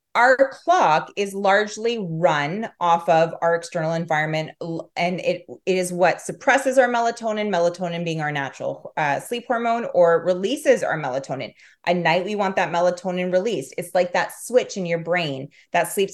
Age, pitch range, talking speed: 20-39, 160-210 Hz, 165 wpm